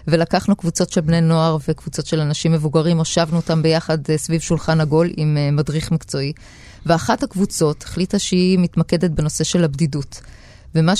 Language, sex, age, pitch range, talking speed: Hebrew, female, 20-39, 160-200 Hz, 145 wpm